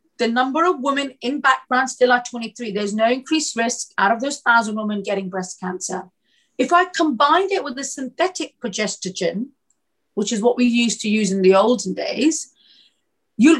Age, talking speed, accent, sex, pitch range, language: 40-59, 180 wpm, British, female, 210-290 Hz, English